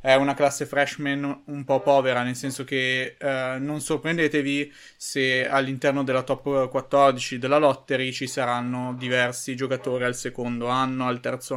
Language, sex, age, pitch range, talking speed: Italian, male, 20-39, 125-140 Hz, 150 wpm